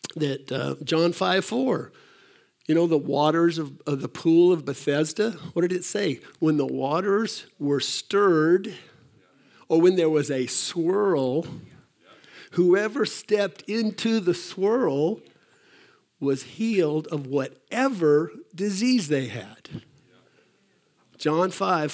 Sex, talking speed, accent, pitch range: male, 120 wpm, American, 145-180 Hz